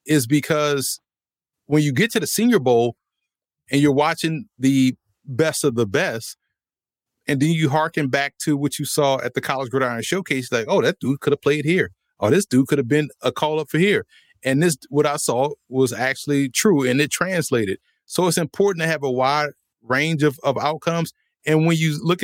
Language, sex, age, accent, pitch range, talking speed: English, male, 30-49, American, 130-160 Hz, 210 wpm